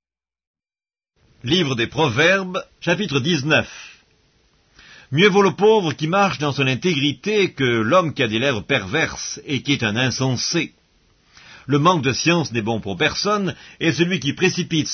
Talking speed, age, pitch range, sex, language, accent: 155 wpm, 50-69, 120-170 Hz, male, English, French